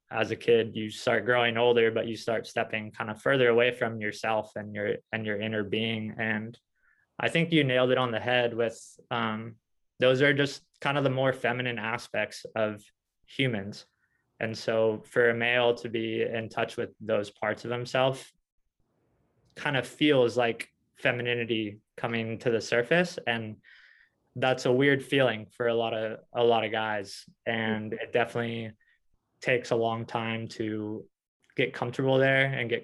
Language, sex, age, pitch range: English, male, 20-39, 110-120 Hz